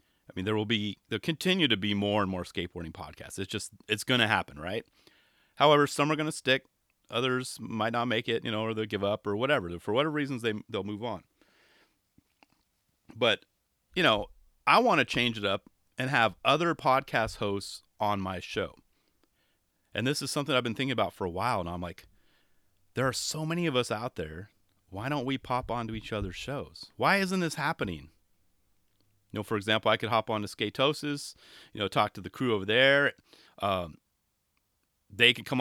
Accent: American